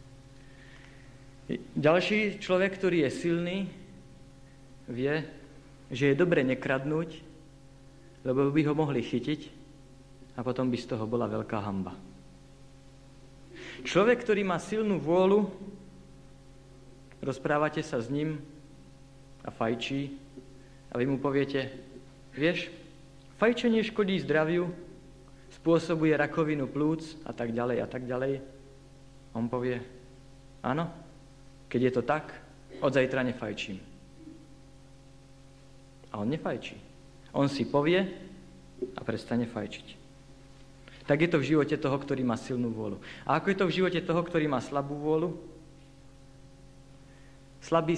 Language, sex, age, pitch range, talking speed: Slovak, male, 50-69, 130-150 Hz, 115 wpm